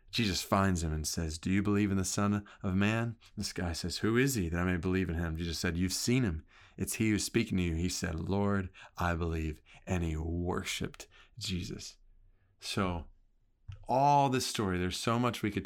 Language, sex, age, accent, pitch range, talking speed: English, male, 40-59, American, 90-115 Hz, 205 wpm